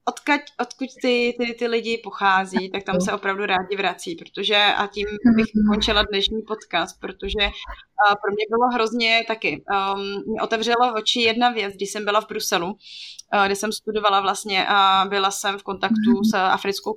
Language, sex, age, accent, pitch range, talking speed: Czech, female, 20-39, native, 200-235 Hz, 165 wpm